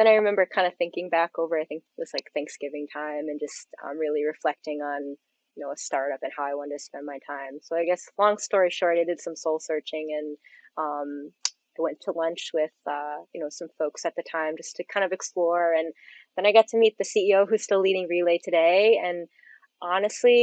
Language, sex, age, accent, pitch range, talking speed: English, female, 20-39, American, 160-190 Hz, 230 wpm